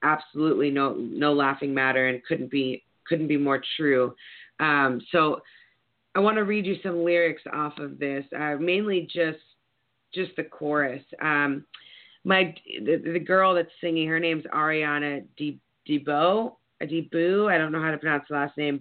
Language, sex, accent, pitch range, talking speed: English, female, American, 140-165 Hz, 165 wpm